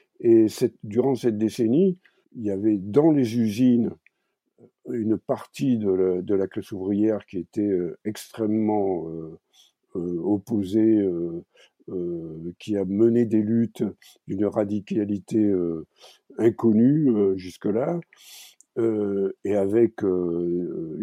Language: French